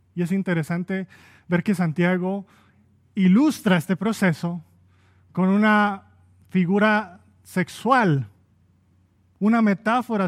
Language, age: Spanish, 30-49